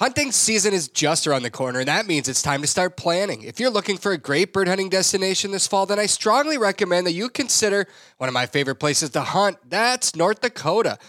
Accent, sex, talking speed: American, male, 235 wpm